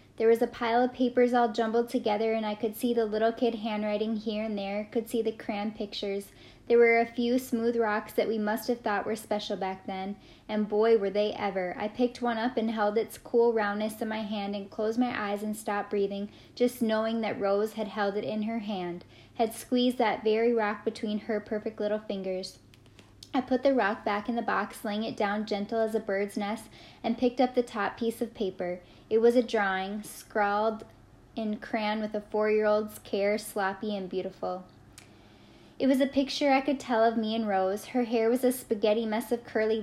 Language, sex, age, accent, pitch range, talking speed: English, female, 10-29, American, 205-235 Hz, 210 wpm